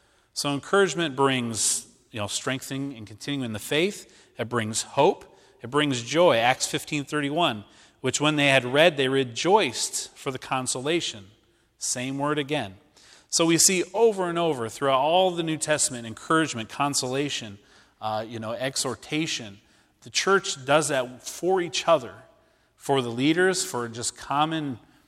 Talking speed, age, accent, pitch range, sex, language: 150 wpm, 40-59, American, 120-155 Hz, male, English